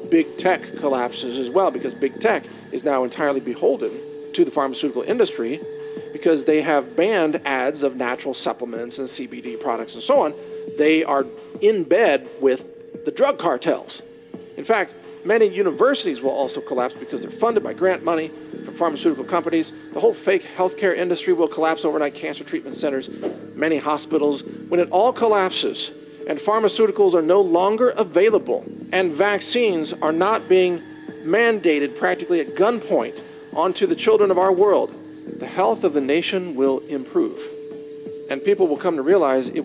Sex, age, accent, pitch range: male, 50-69, American, 150-235 Hz